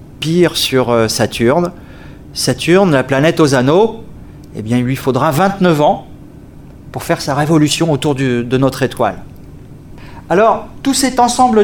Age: 40-59